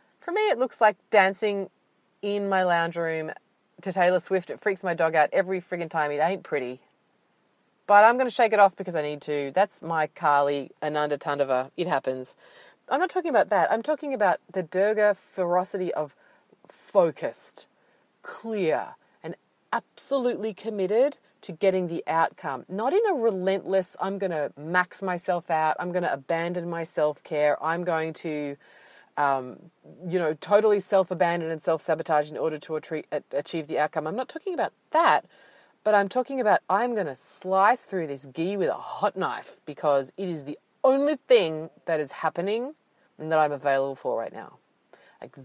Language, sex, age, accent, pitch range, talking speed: English, female, 30-49, Australian, 150-205 Hz, 175 wpm